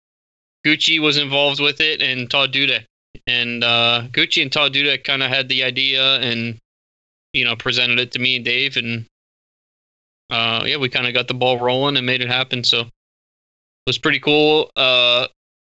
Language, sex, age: English, male, 20-39